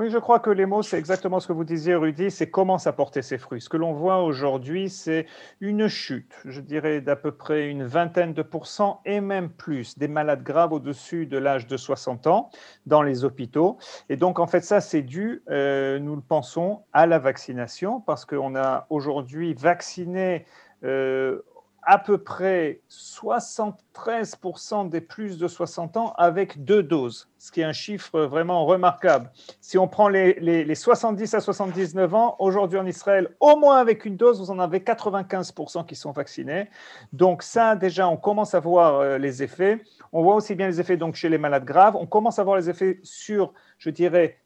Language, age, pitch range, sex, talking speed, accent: Italian, 40-59, 150-195 Hz, male, 195 wpm, French